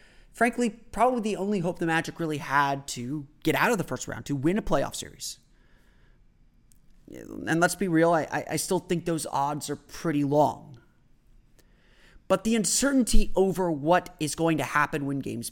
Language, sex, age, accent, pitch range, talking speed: English, male, 30-49, American, 145-185 Hz, 175 wpm